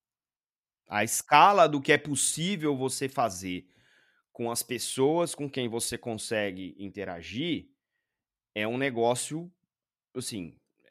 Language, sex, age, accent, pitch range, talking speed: Portuguese, male, 30-49, Brazilian, 105-140 Hz, 110 wpm